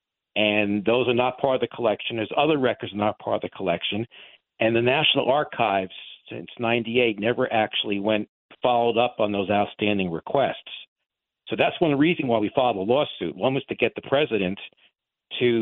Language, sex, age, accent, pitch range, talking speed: English, male, 50-69, American, 105-130 Hz, 190 wpm